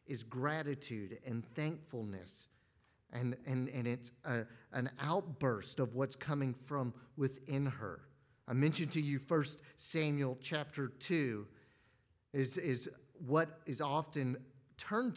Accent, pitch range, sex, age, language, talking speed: American, 120-155 Hz, male, 40-59, English, 125 wpm